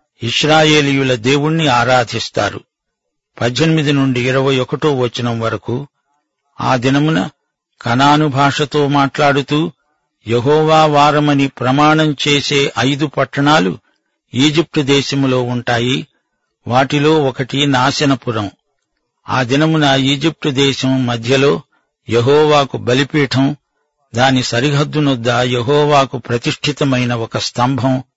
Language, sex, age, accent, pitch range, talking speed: Telugu, male, 50-69, native, 125-150 Hz, 80 wpm